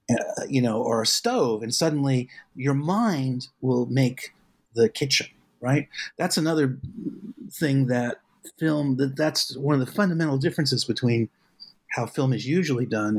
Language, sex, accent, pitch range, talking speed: English, male, American, 120-160 Hz, 150 wpm